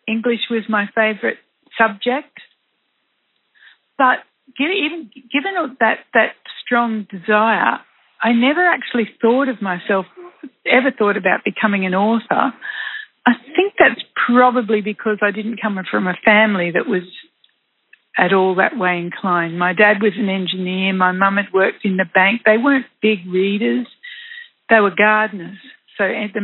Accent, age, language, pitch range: Australian, 60-79, English, 195-250 Hz